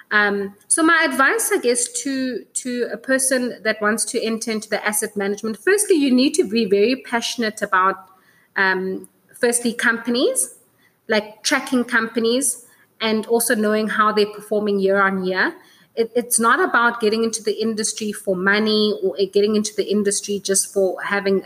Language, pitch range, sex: English, 200-235 Hz, female